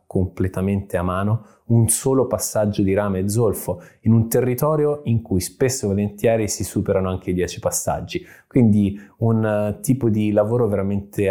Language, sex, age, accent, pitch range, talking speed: Italian, male, 20-39, native, 95-115 Hz, 160 wpm